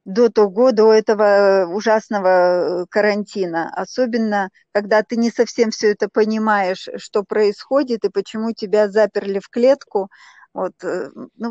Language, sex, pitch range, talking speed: Russian, female, 200-240 Hz, 130 wpm